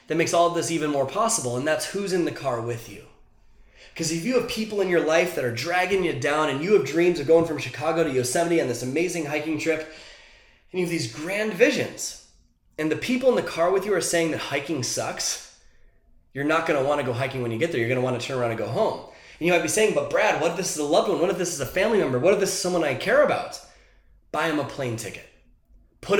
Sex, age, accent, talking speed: male, 20-39, American, 265 wpm